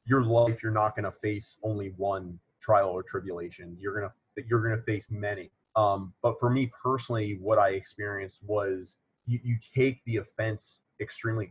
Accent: American